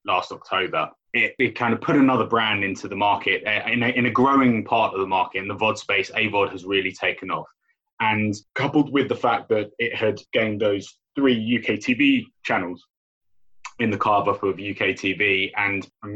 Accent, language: British, English